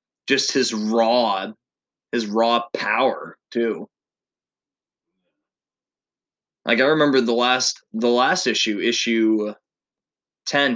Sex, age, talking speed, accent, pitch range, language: male, 20-39, 95 wpm, American, 115-135 Hz, English